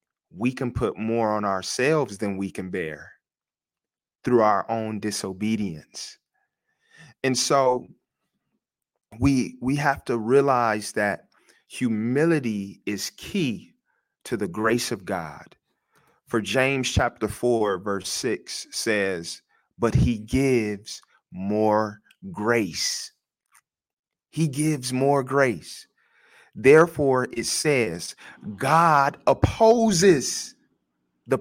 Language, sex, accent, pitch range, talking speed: English, male, American, 100-140 Hz, 100 wpm